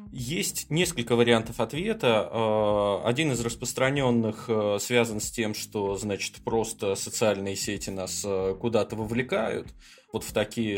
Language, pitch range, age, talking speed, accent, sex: Russian, 115-150 Hz, 20-39, 115 wpm, native, male